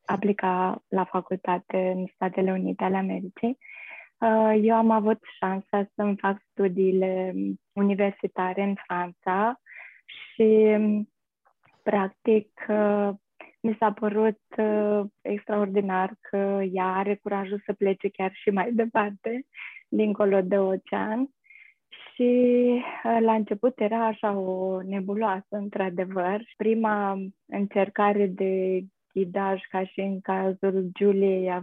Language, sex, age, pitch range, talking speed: Romanian, female, 20-39, 195-225 Hz, 100 wpm